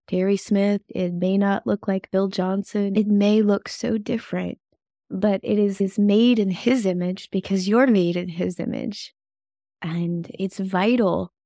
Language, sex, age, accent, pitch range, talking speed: English, female, 20-39, American, 185-220 Hz, 160 wpm